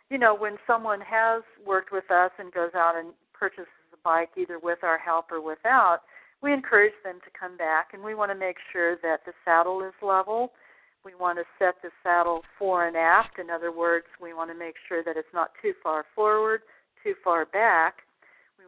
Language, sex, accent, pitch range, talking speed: English, female, American, 170-225 Hz, 210 wpm